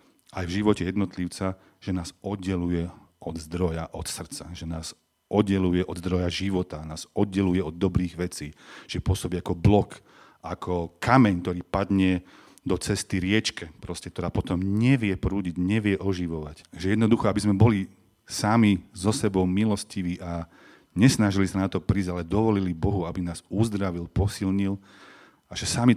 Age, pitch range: 40-59, 85-105 Hz